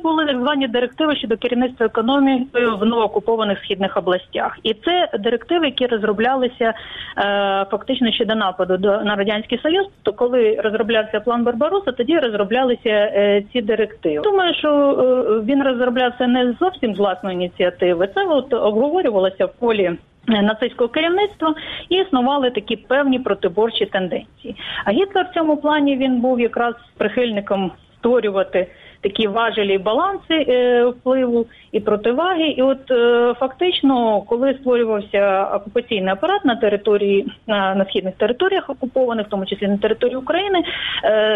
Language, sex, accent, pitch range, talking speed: Ukrainian, female, native, 210-270 Hz, 135 wpm